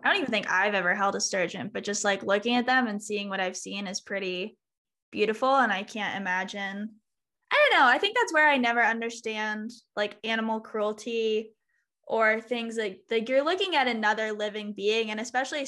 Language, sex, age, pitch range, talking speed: English, female, 10-29, 200-235 Hz, 205 wpm